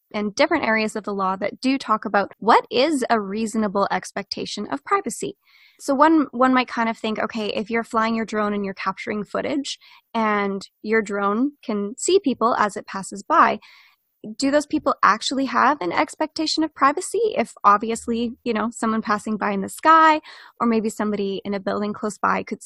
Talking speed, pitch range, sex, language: 190 wpm, 210-285 Hz, female, English